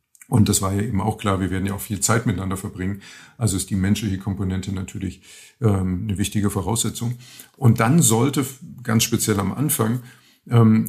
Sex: male